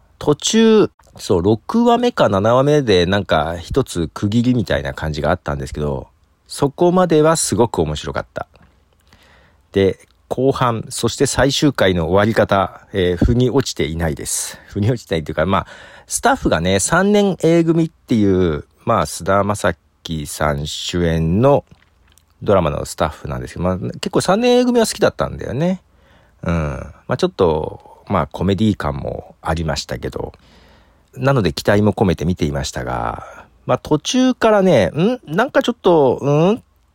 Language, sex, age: Japanese, male, 40-59